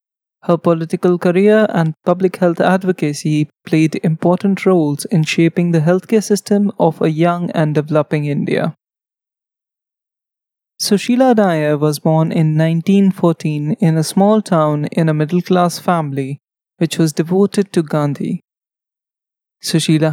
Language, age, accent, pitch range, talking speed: English, 20-39, Indian, 155-185 Hz, 125 wpm